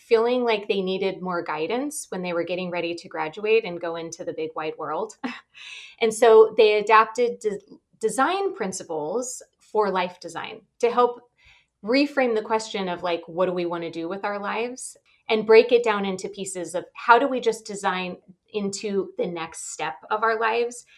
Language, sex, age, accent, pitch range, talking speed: English, female, 20-39, American, 180-225 Hz, 185 wpm